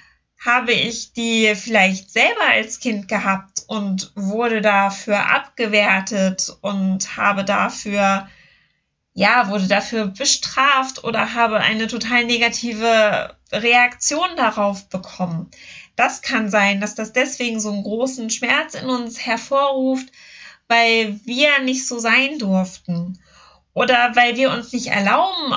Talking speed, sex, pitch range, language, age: 120 wpm, female, 205-260 Hz, German, 20-39